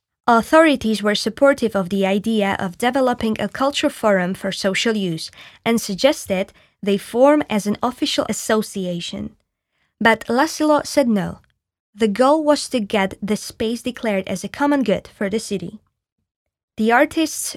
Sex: female